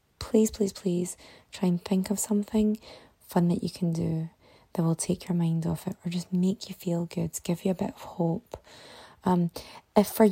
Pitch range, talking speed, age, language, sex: 180-215 Hz, 205 wpm, 20-39, English, female